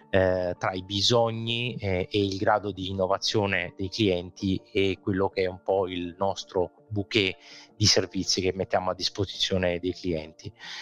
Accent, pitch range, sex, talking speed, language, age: native, 95-105 Hz, male, 150 wpm, Italian, 30-49